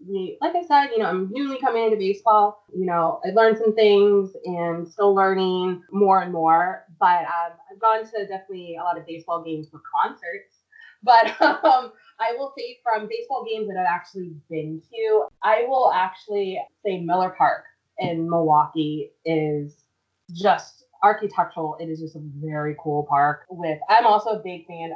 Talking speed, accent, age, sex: 175 wpm, American, 20-39, female